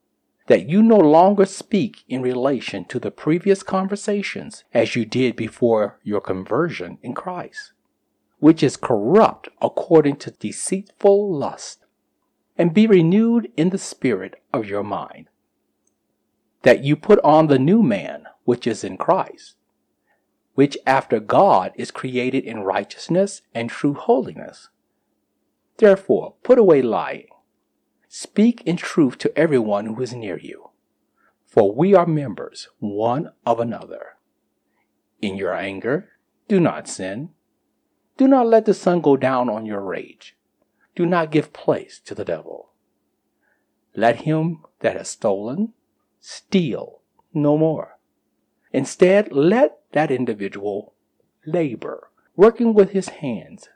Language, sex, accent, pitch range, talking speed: English, male, American, 125-200 Hz, 130 wpm